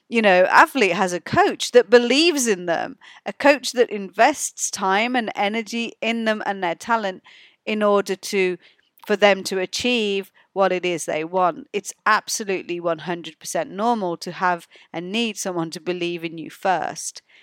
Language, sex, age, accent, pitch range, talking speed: English, female, 40-59, British, 180-225 Hz, 170 wpm